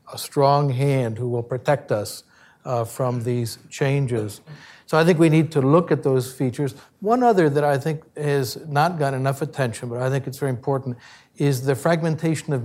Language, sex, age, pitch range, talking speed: English, male, 60-79, 130-160 Hz, 195 wpm